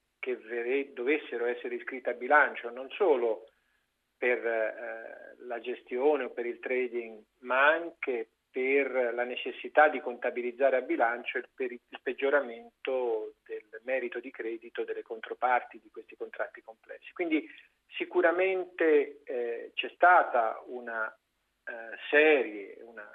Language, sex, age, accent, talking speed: Italian, male, 40-59, native, 125 wpm